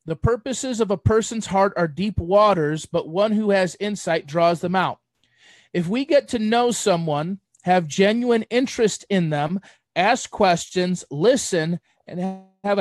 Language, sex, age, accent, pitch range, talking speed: English, male, 30-49, American, 175-205 Hz, 155 wpm